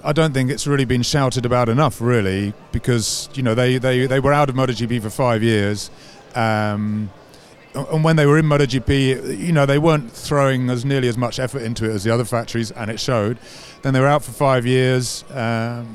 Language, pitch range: English, 115-150 Hz